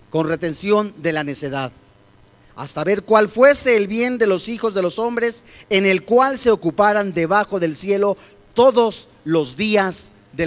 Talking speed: 165 wpm